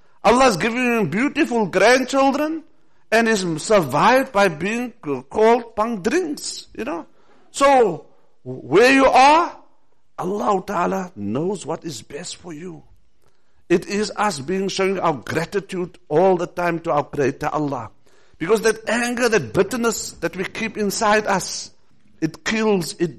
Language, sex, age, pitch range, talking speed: English, male, 50-69, 165-215 Hz, 140 wpm